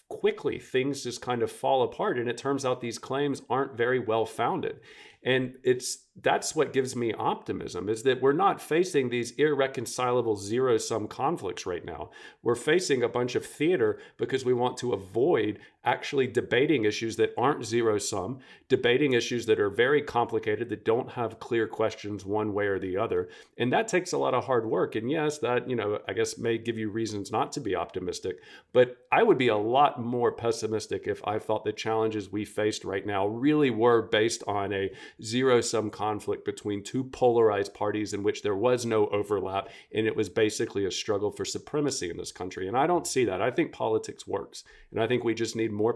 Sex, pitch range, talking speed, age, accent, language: male, 110-140 Hz, 200 wpm, 40-59, American, English